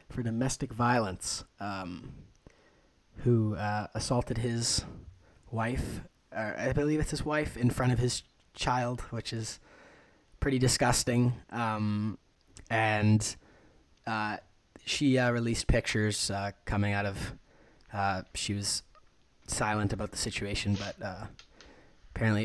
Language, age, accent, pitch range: English, 20-39, American, 100-120 Hz